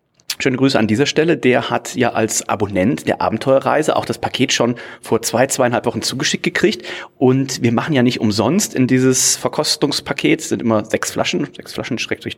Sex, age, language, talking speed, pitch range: male, 30-49, German, 190 wpm, 115-140 Hz